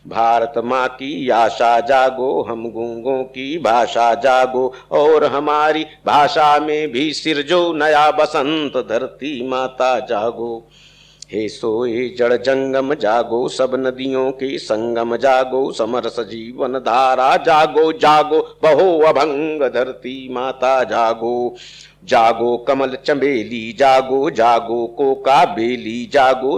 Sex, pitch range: male, 120-155 Hz